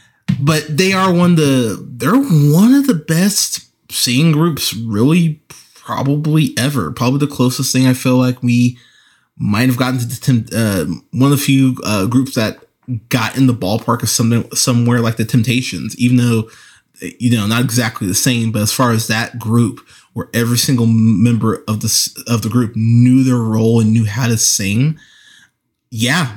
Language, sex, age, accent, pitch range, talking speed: English, male, 20-39, American, 115-140 Hz, 180 wpm